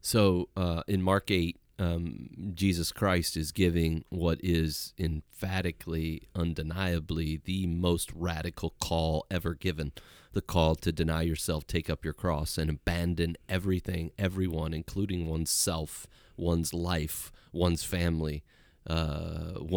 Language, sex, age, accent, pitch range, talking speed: English, male, 30-49, American, 80-95 Hz, 120 wpm